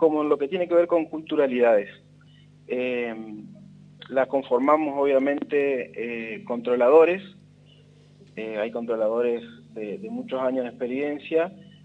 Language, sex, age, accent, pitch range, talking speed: Spanish, male, 30-49, Argentinian, 135-185 Hz, 120 wpm